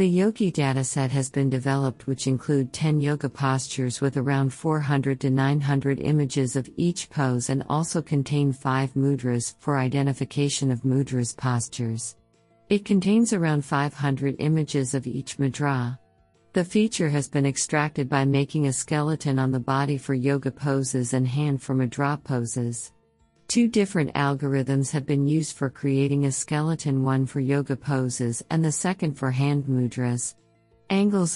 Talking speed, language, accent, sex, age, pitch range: 150 wpm, English, American, female, 50-69, 130-150 Hz